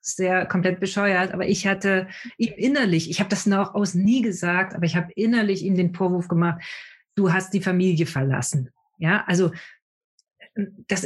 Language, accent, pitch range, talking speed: German, German, 175-215 Hz, 170 wpm